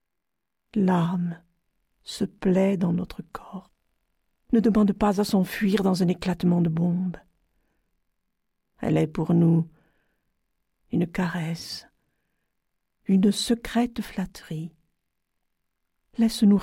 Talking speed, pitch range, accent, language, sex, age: 95 wpm, 170-210 Hz, French, French, female, 50-69